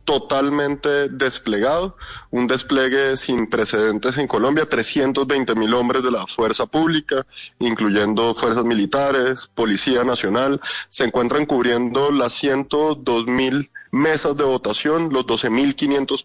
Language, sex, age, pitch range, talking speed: Spanish, male, 20-39, 115-140 Hz, 120 wpm